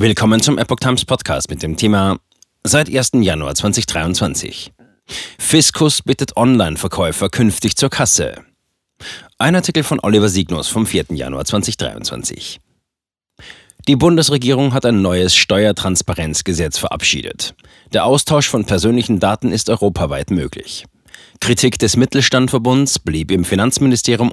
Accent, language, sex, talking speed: German, German, male, 120 wpm